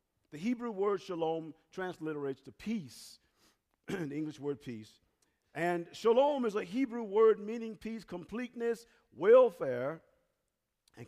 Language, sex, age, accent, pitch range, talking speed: English, male, 50-69, American, 145-220 Hz, 120 wpm